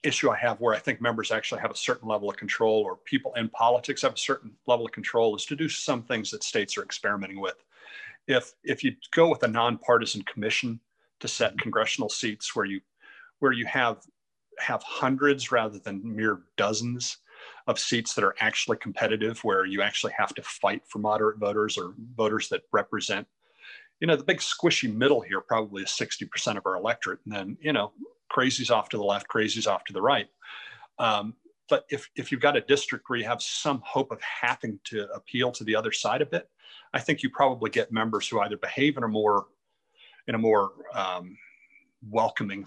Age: 40-59